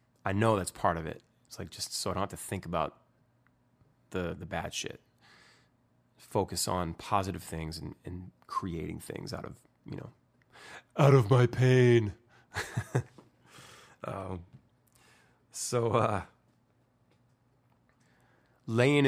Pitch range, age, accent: 90-110 Hz, 20-39, American